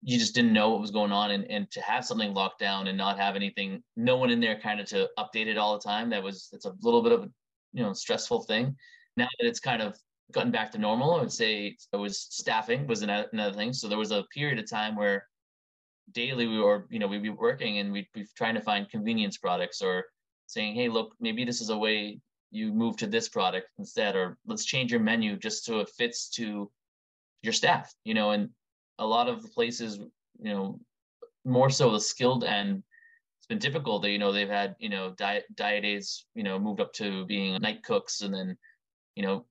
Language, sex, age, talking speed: English, male, 20-39, 230 wpm